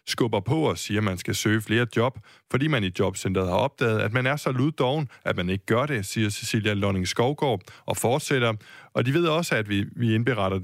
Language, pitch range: Danish, 105-135 Hz